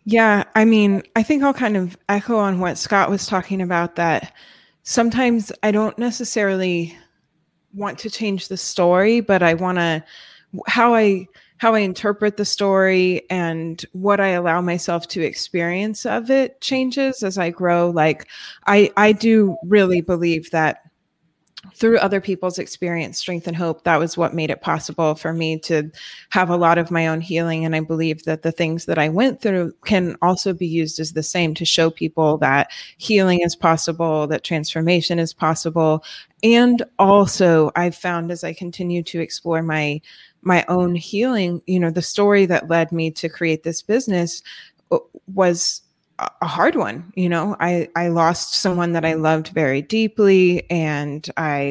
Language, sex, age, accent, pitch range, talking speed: English, female, 20-39, American, 165-195 Hz, 170 wpm